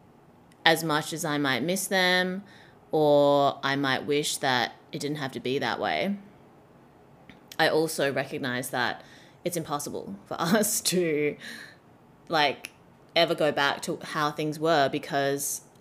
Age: 20-39